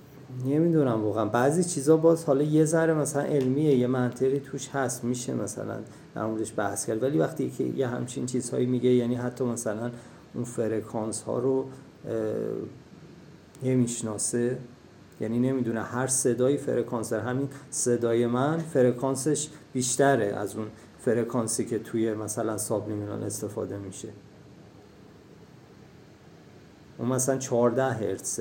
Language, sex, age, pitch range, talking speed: Persian, male, 40-59, 115-145 Hz, 125 wpm